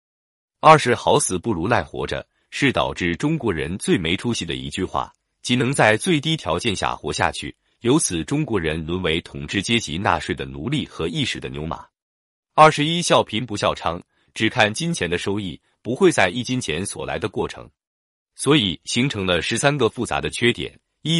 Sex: male